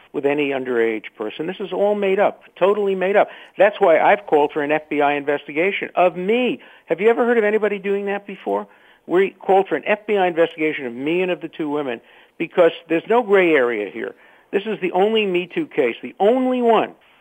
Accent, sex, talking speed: American, male, 210 wpm